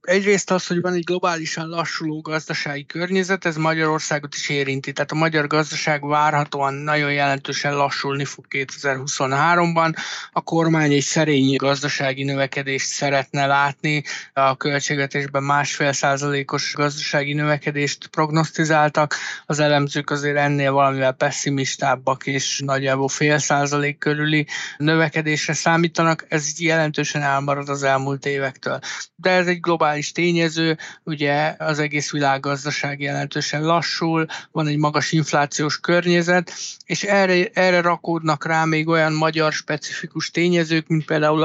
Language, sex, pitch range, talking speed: Hungarian, male, 145-160 Hz, 125 wpm